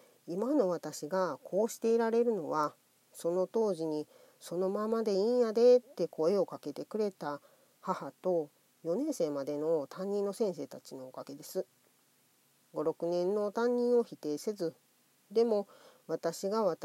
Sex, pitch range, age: female, 160-230 Hz, 40-59